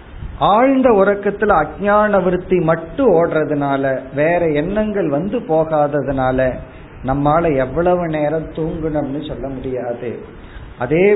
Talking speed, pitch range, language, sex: 90 wpm, 130-175 Hz, Tamil, male